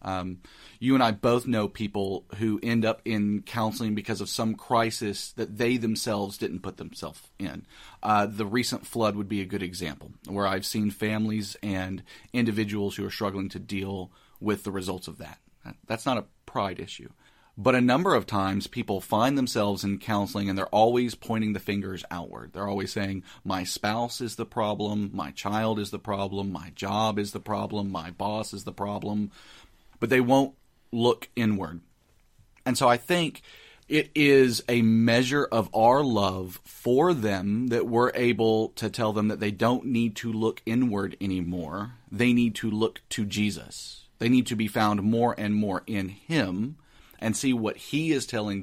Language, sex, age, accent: English, male, 40-59, American